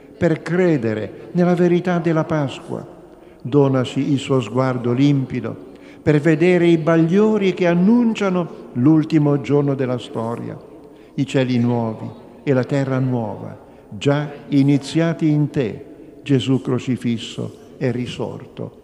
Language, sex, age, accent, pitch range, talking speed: Italian, male, 50-69, native, 120-150 Hz, 115 wpm